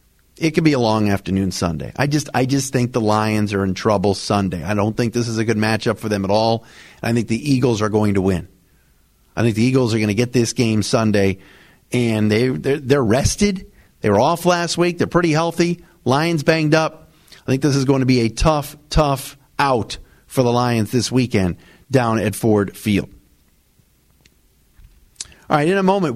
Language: English